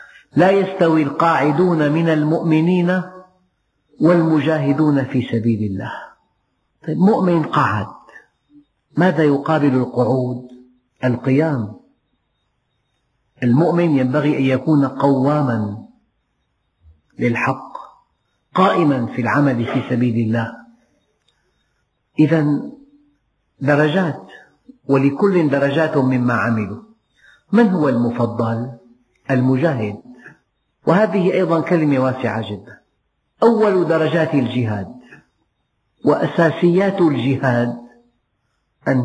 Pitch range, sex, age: 120-160 Hz, male, 50-69